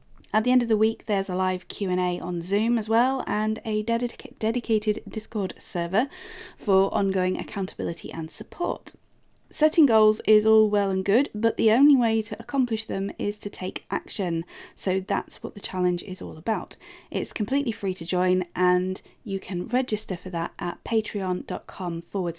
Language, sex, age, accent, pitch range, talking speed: English, female, 30-49, British, 190-250 Hz, 170 wpm